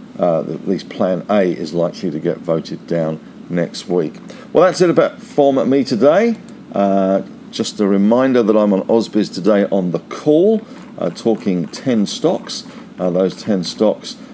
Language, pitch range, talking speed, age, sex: English, 100-135 Hz, 165 wpm, 50-69, male